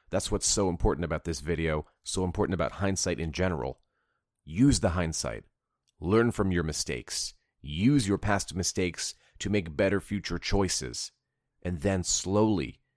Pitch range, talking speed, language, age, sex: 85-100 Hz, 150 wpm, English, 30-49, male